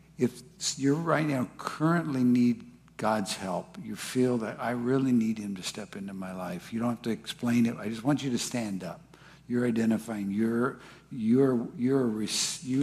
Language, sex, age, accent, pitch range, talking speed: English, male, 60-79, American, 115-150 Hz, 180 wpm